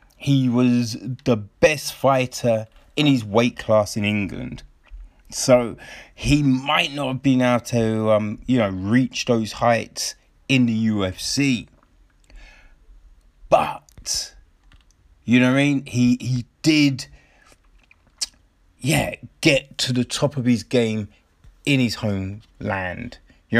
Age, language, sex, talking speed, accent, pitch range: 30-49, English, male, 125 wpm, British, 100-135 Hz